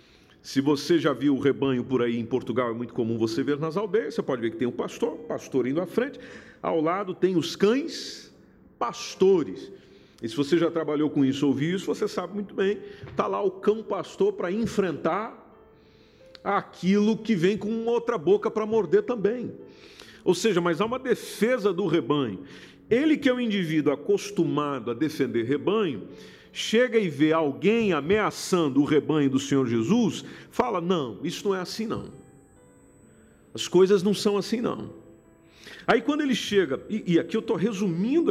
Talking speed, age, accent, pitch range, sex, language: 180 wpm, 50-69, Brazilian, 145-210 Hz, male, Portuguese